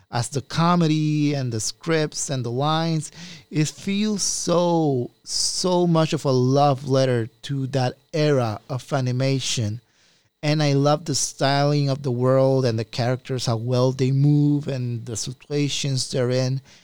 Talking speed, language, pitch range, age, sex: 155 wpm, English, 125-150 Hz, 30-49, male